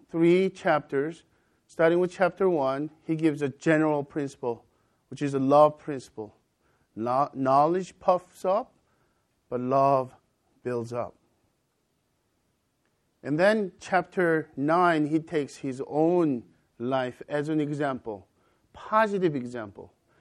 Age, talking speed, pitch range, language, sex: 50-69, 110 wpm, 135-170 Hz, English, male